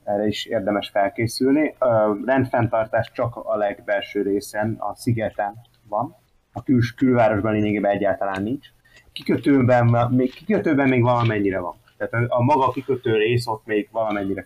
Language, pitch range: Hungarian, 100-125 Hz